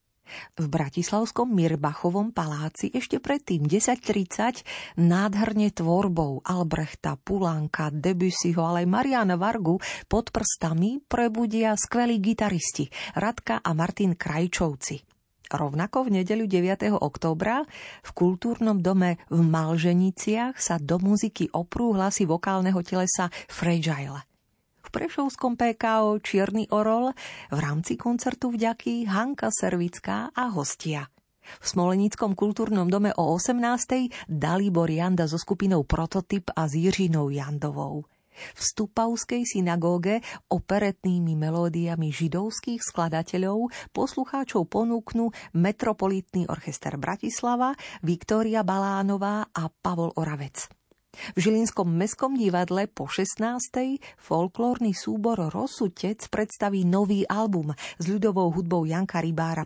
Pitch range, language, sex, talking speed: 165-220 Hz, Slovak, female, 105 wpm